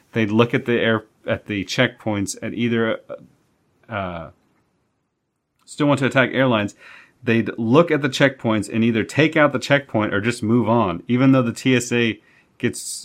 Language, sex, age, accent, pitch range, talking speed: English, male, 30-49, American, 105-130 Hz, 165 wpm